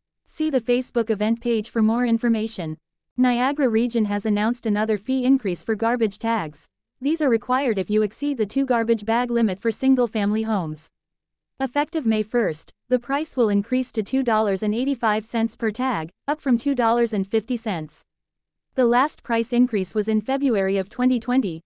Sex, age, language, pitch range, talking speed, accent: female, 30-49, English, 215-255 Hz, 150 wpm, American